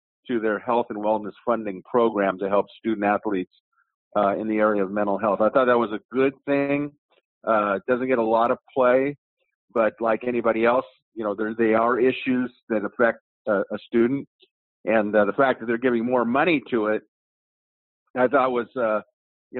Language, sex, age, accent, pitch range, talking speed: English, male, 50-69, American, 110-130 Hz, 195 wpm